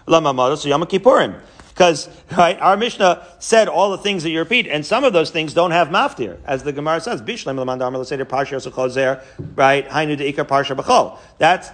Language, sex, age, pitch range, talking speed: English, male, 40-59, 145-190 Hz, 140 wpm